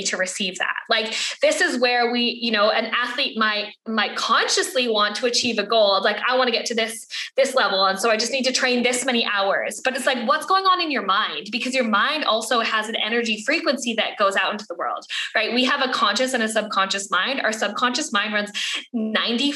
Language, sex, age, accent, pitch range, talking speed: English, female, 10-29, American, 215-270 Hz, 235 wpm